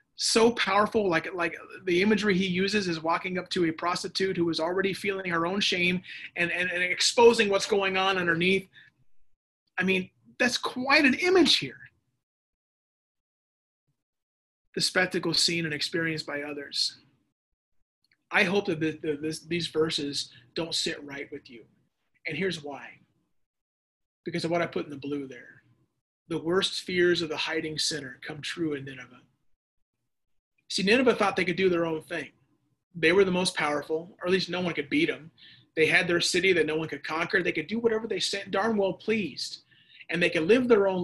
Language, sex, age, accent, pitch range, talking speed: English, male, 30-49, American, 155-195 Hz, 185 wpm